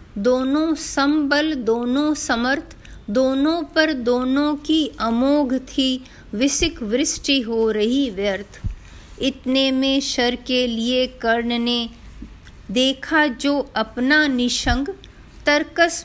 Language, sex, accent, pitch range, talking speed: Hindi, female, native, 225-280 Hz, 100 wpm